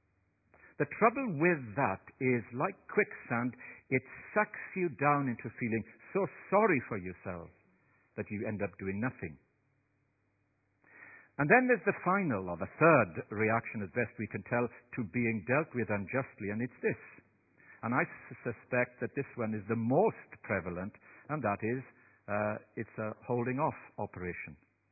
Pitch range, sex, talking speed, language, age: 100-140 Hz, male, 150 wpm, English, 60-79